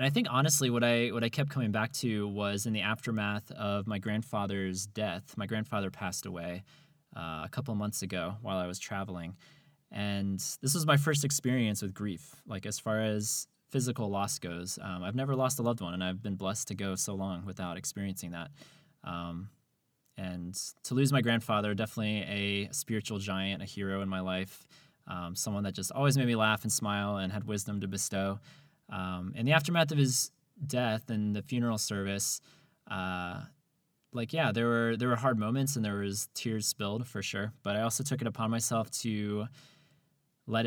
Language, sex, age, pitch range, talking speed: English, male, 20-39, 100-125 Hz, 195 wpm